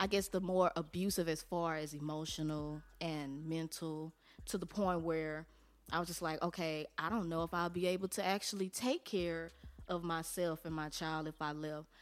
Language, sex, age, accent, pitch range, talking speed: English, female, 20-39, American, 160-200 Hz, 195 wpm